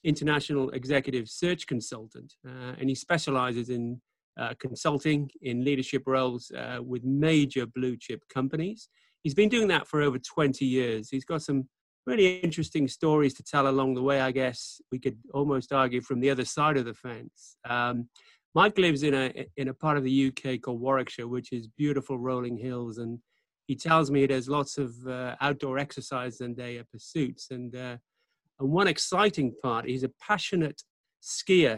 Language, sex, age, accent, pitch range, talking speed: English, male, 30-49, British, 125-150 Hz, 175 wpm